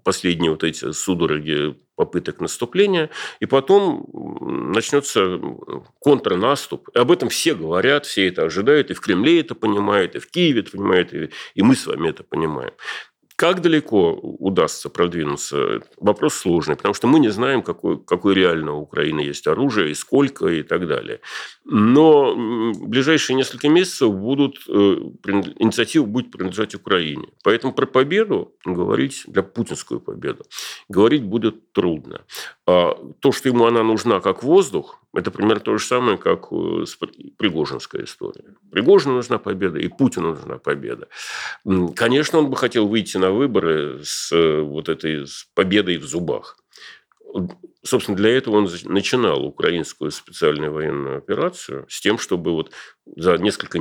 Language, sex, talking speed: Russian, male, 145 wpm